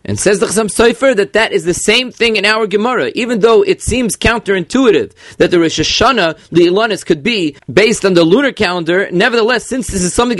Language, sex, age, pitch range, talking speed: English, male, 30-49, 175-220 Hz, 215 wpm